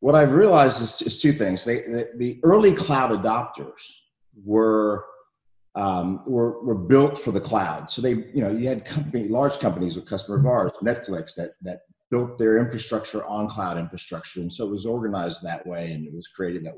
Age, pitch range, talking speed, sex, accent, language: 50-69, 100-130 Hz, 195 wpm, male, American, English